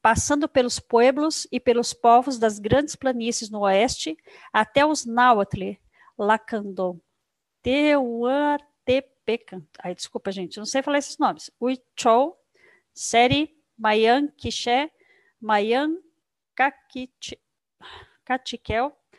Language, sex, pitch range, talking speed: Portuguese, female, 225-290 Hz, 90 wpm